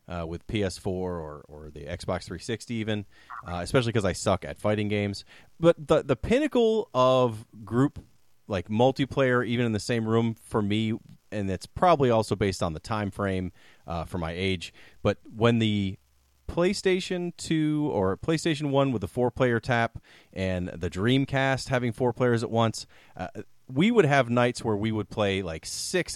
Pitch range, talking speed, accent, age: 95-130 Hz, 175 wpm, American, 30-49